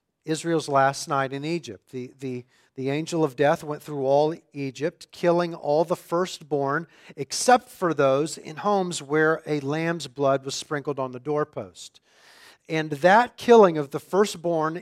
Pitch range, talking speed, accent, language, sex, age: 140-185 Hz, 160 wpm, American, English, male, 40-59